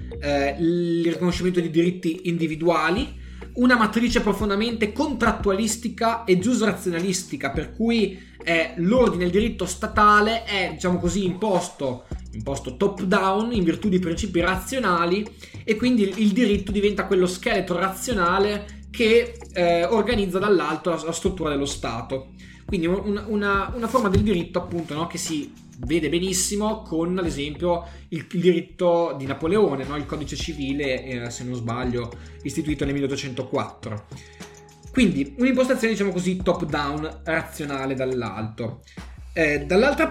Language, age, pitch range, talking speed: Italian, 20-39, 150-210 Hz, 130 wpm